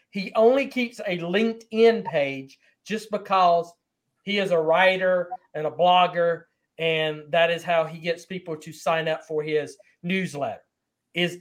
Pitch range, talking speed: 155-210 Hz, 155 wpm